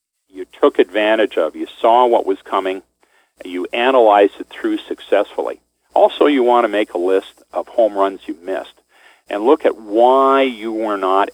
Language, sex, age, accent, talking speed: English, male, 50-69, American, 175 wpm